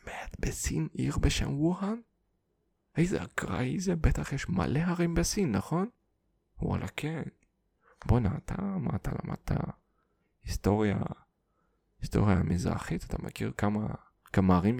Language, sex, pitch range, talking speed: English, male, 95-165 Hz, 120 wpm